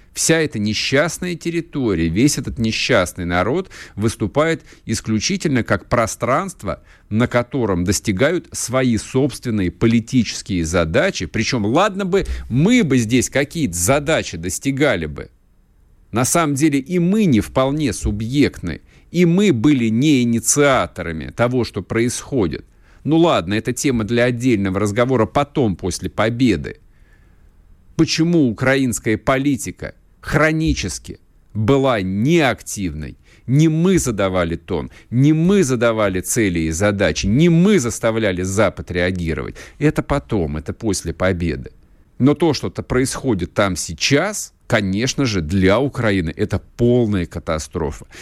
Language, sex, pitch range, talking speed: Russian, male, 95-145 Hz, 115 wpm